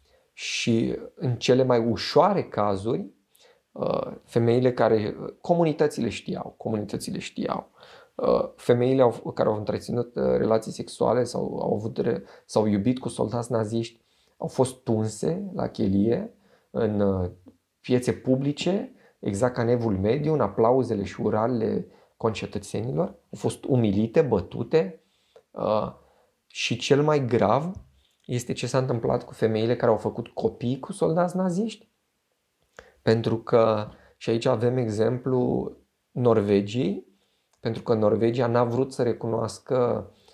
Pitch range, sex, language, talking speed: 110-130 Hz, male, Romanian, 120 wpm